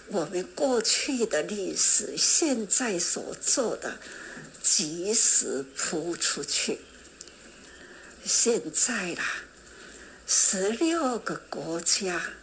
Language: Chinese